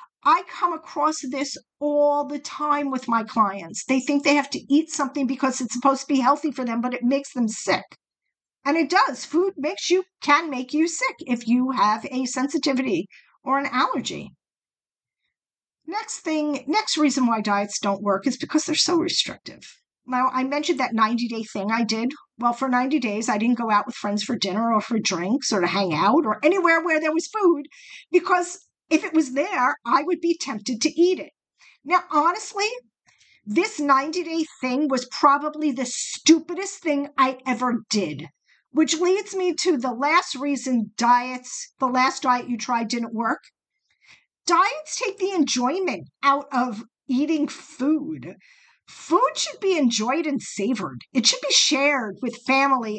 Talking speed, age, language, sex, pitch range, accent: 175 wpm, 50-69, English, female, 245-315 Hz, American